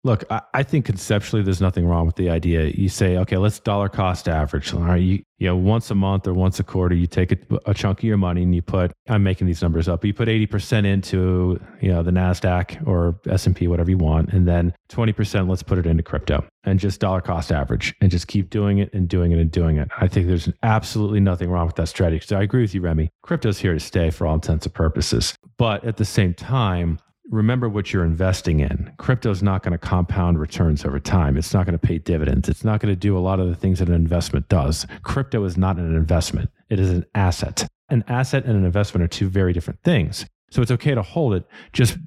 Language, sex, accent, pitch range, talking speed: English, male, American, 85-105 Hz, 245 wpm